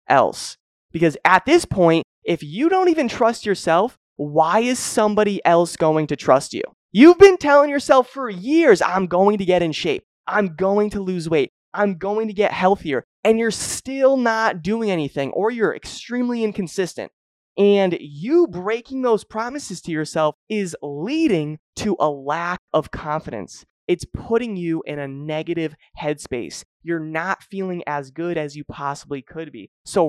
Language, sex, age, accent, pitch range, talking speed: English, male, 20-39, American, 155-225 Hz, 165 wpm